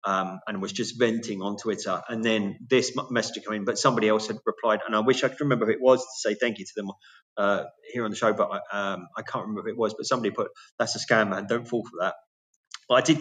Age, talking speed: 30-49, 275 wpm